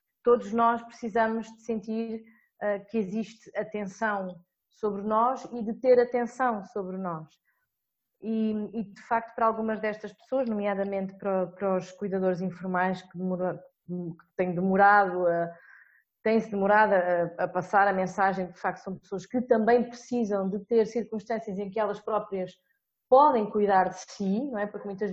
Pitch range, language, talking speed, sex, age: 195-230 Hz, Portuguese, 160 wpm, female, 20-39